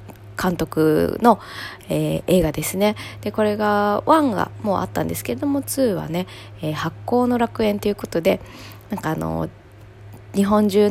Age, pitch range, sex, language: 20-39, 160-235 Hz, female, Japanese